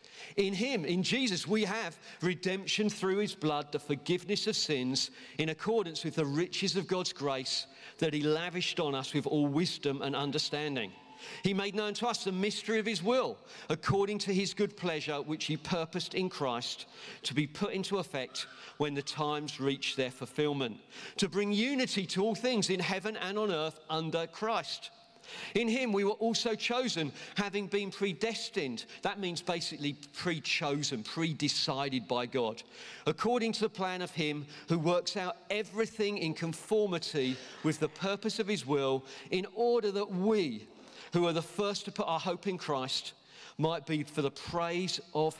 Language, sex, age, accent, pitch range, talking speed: English, male, 50-69, British, 150-205 Hz, 175 wpm